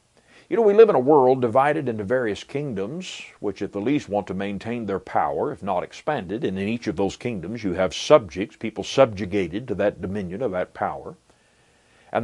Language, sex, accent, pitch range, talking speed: English, male, American, 115-175 Hz, 200 wpm